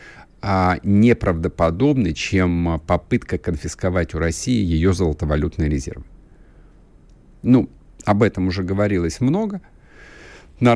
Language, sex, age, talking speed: Russian, male, 50-69, 95 wpm